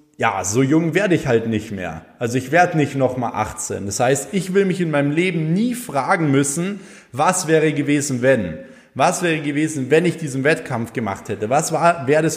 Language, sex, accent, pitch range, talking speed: German, male, German, 130-160 Hz, 205 wpm